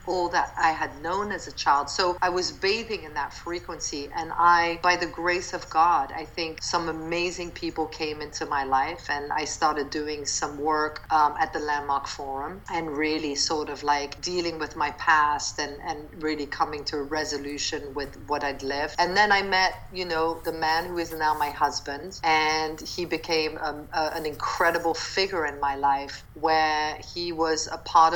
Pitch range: 150-175 Hz